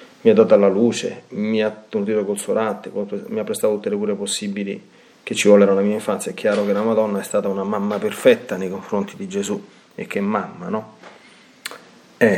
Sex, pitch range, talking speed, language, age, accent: male, 100-120 Hz, 205 wpm, Italian, 30-49, native